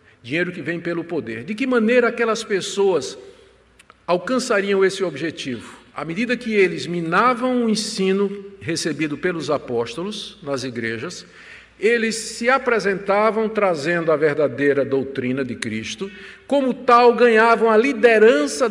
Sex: male